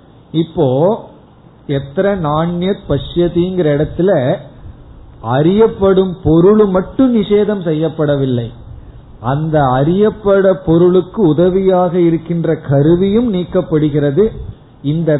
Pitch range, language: 140-185 Hz, Tamil